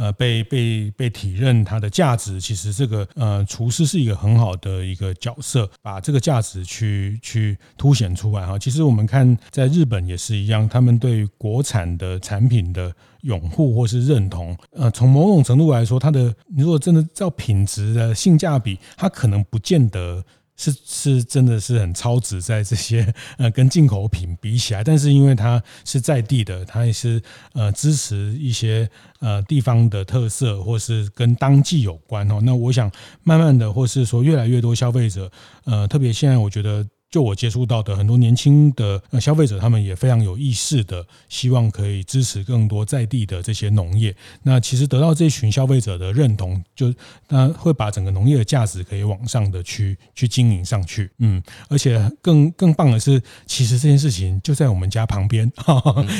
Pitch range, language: 105-135 Hz, Chinese